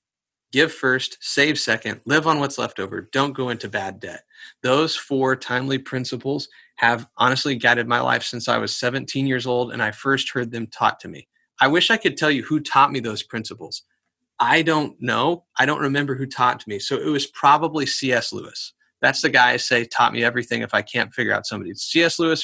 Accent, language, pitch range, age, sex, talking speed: American, English, 120-145 Hz, 30-49, male, 215 wpm